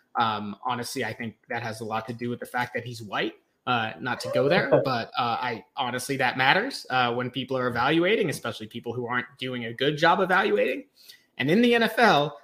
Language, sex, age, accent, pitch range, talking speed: English, male, 20-39, American, 130-200 Hz, 215 wpm